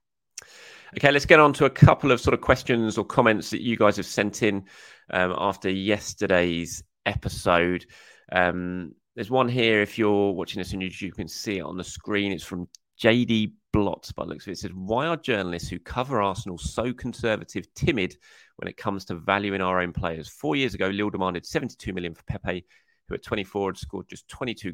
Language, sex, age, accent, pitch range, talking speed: English, male, 30-49, British, 90-105 Hz, 205 wpm